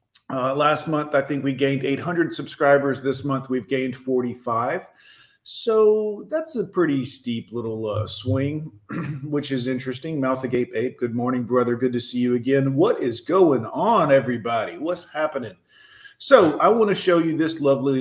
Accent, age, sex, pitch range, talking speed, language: American, 40-59, male, 125-160 Hz, 170 wpm, English